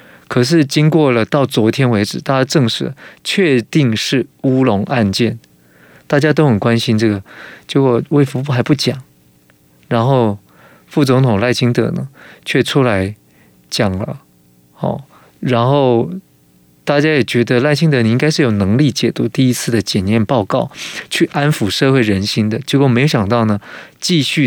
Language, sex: Chinese, male